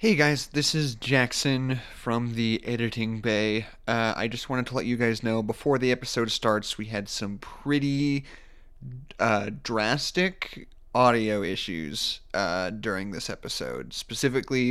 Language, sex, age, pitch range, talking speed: English, male, 30-49, 110-135 Hz, 145 wpm